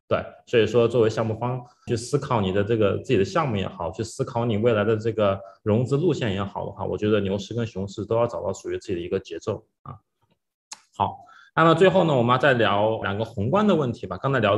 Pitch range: 105-140 Hz